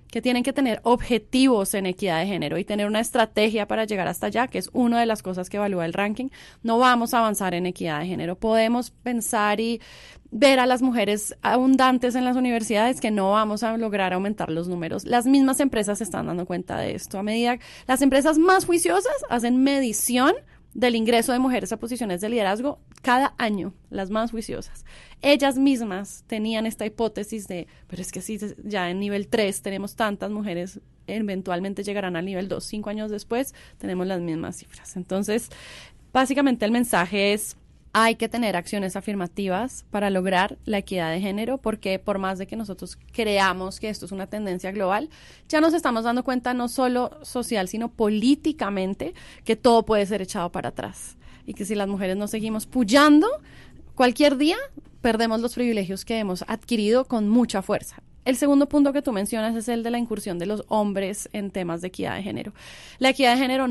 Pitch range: 200-245 Hz